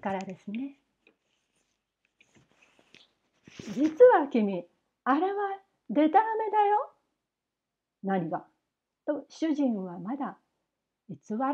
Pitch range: 215-360 Hz